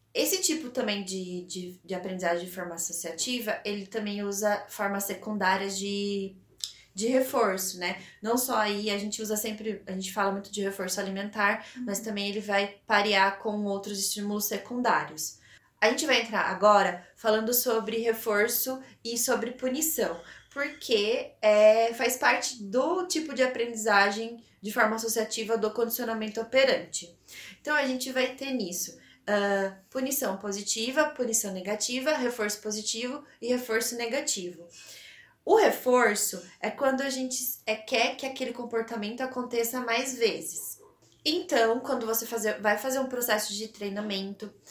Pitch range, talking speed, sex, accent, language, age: 200-250 Hz, 140 wpm, female, Brazilian, Portuguese, 20-39